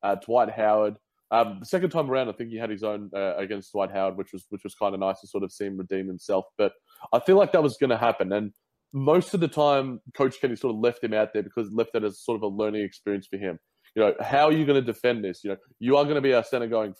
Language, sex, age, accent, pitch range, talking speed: English, male, 20-39, Australian, 105-130 Hz, 295 wpm